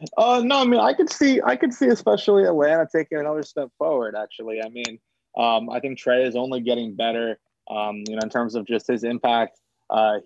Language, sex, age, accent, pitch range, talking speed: English, male, 20-39, American, 110-125 Hz, 215 wpm